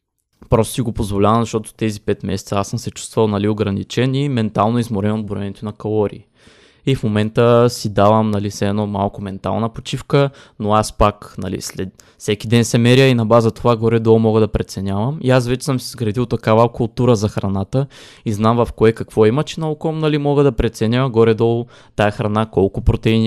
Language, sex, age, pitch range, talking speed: Bulgarian, male, 20-39, 105-120 Hz, 195 wpm